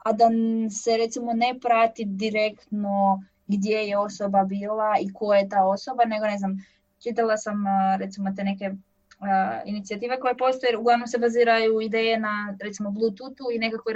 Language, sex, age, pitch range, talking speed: Croatian, female, 20-39, 200-230 Hz, 160 wpm